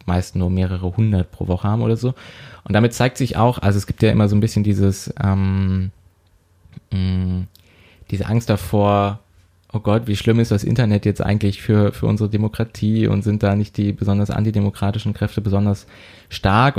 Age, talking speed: 20-39, 180 wpm